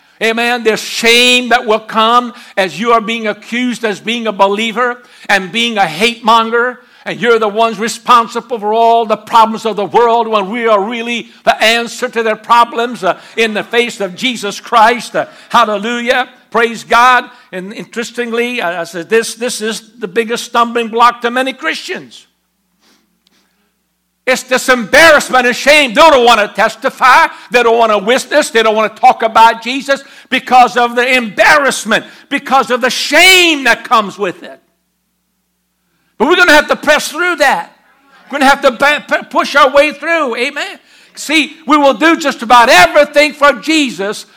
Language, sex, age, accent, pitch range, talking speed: English, male, 60-79, American, 215-255 Hz, 175 wpm